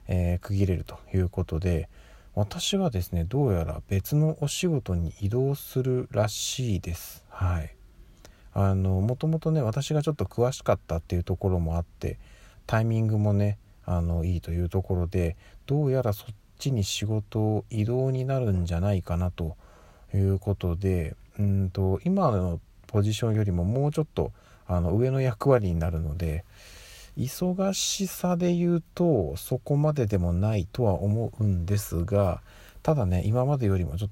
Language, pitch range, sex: Japanese, 90-115 Hz, male